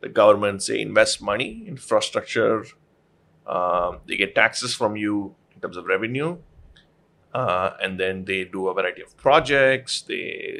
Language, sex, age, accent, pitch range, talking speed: Hindi, male, 30-49, native, 105-165 Hz, 160 wpm